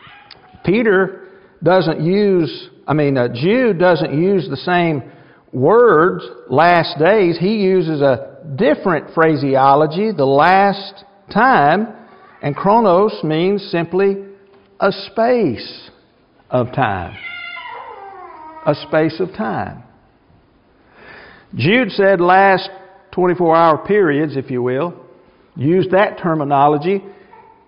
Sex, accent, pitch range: male, American, 160-200 Hz